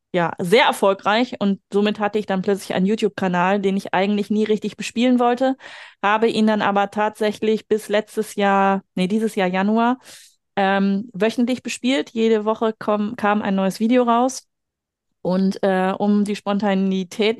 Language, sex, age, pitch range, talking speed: German, female, 30-49, 195-220 Hz, 155 wpm